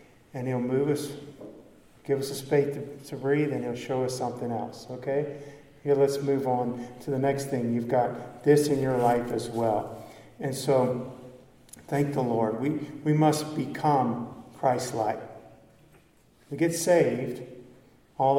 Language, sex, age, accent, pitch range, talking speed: English, male, 50-69, American, 125-145 Hz, 155 wpm